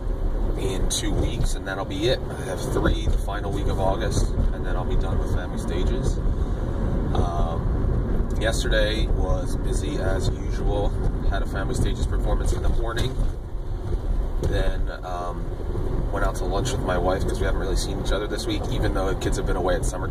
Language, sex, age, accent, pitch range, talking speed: English, male, 30-49, American, 85-100 Hz, 190 wpm